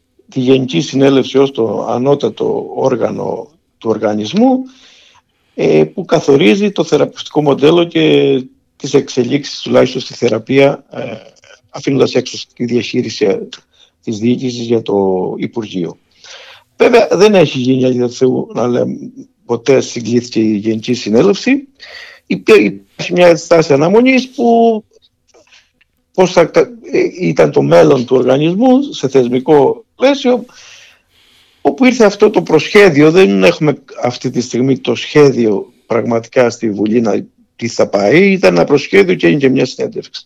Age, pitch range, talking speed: 50-69, 120-200 Hz, 120 wpm